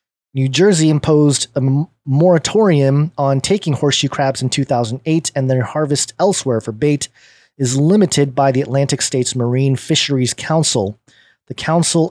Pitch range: 135-165 Hz